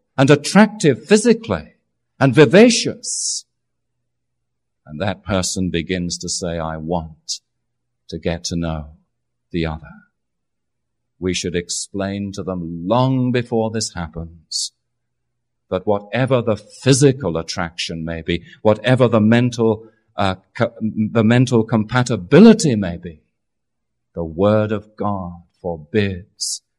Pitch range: 85-115 Hz